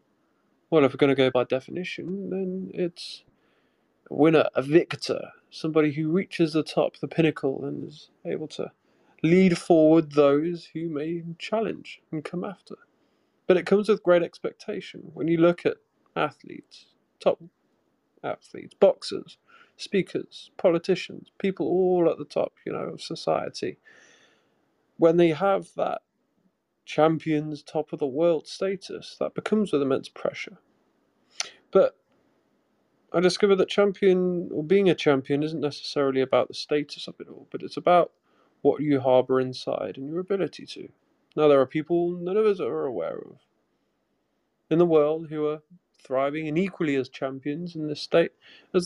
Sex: male